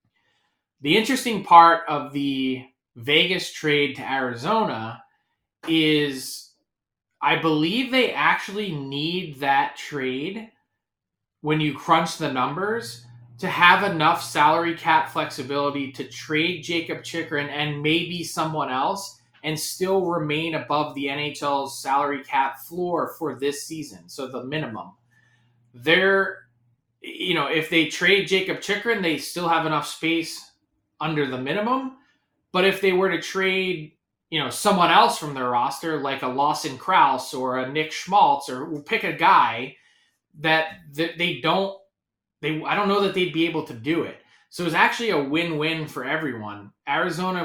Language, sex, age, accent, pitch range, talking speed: English, male, 20-39, American, 140-170 Hz, 145 wpm